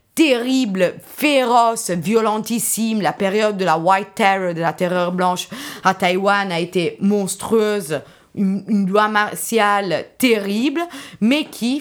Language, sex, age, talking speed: French, female, 20-39, 135 wpm